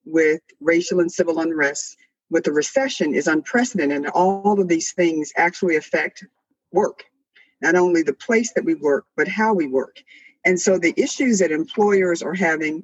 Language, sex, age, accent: English, female, 50-69, American